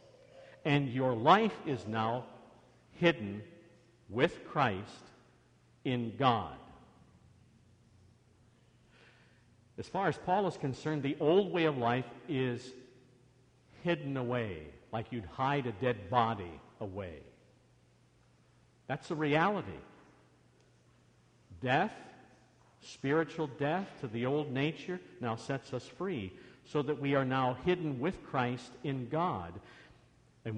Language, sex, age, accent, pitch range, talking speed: English, male, 50-69, American, 115-150 Hz, 110 wpm